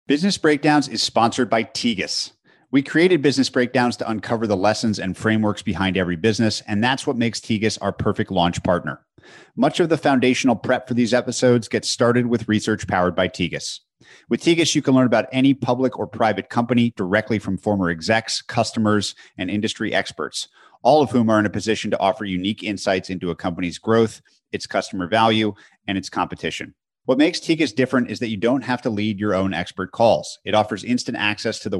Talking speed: 195 wpm